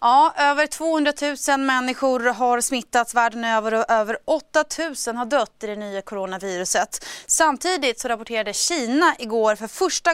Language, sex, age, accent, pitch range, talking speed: Swedish, female, 30-49, native, 210-275 Hz, 155 wpm